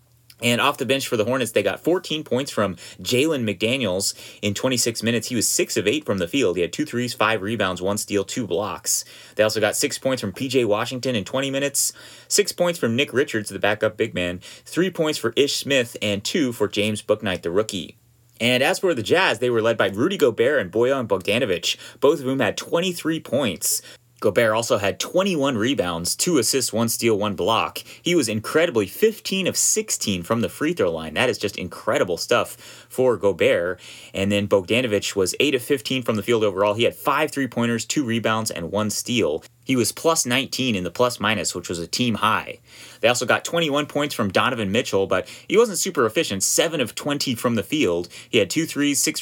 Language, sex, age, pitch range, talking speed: English, male, 30-49, 105-145 Hz, 210 wpm